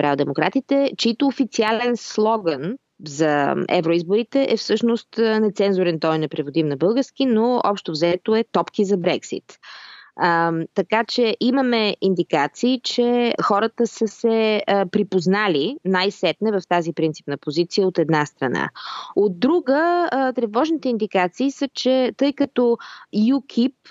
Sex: female